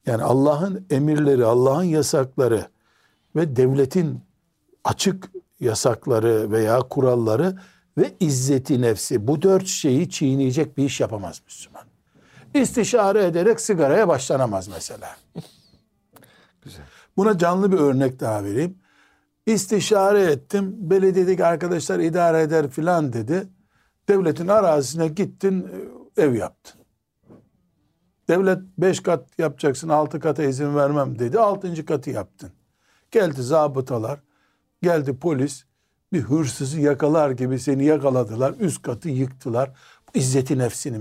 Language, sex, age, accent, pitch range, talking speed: Turkish, male, 60-79, native, 130-175 Hz, 105 wpm